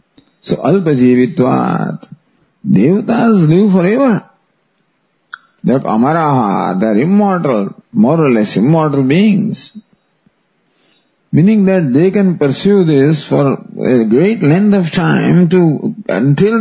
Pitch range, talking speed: 135-195 Hz, 100 wpm